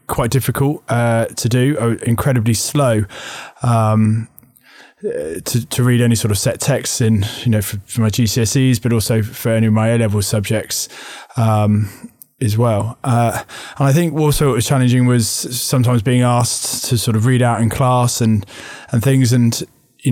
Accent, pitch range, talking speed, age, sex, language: British, 115-130 Hz, 175 wpm, 20-39, male, English